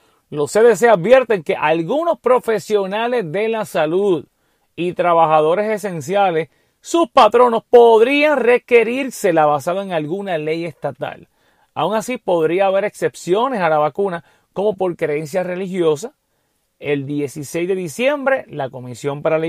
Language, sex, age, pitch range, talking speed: English, male, 30-49, 155-220 Hz, 125 wpm